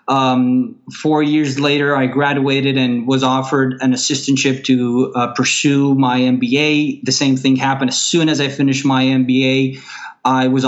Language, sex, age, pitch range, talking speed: English, male, 20-39, 125-150 Hz, 165 wpm